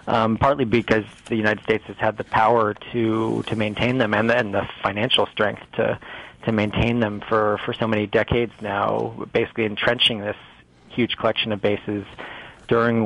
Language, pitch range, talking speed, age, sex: English, 105-115 Hz, 175 wpm, 30-49, male